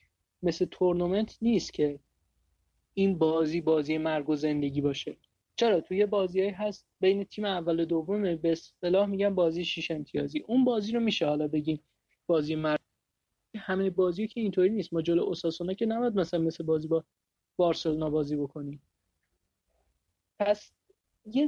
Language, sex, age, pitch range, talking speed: Persian, male, 30-49, 155-195 Hz, 155 wpm